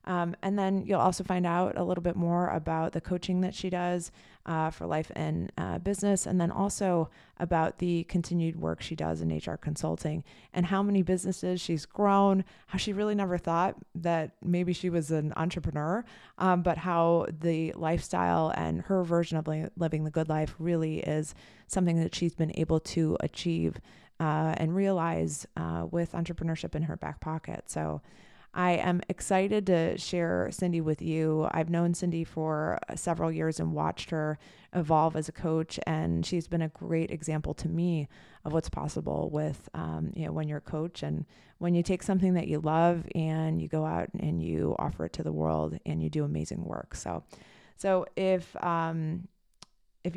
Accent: American